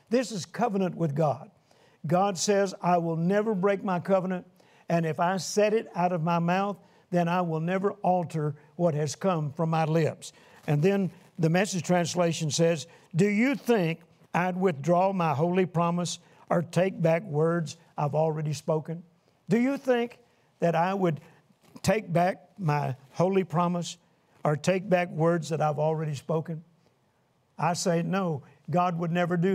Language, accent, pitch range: English, American, 160-185 Hz